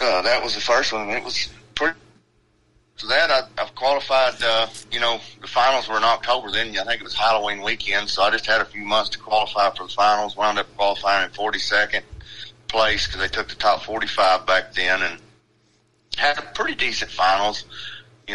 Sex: male